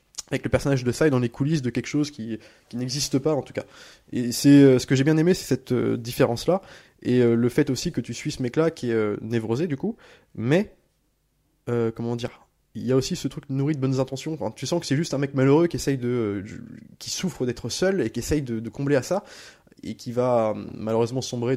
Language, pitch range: French, 115-140 Hz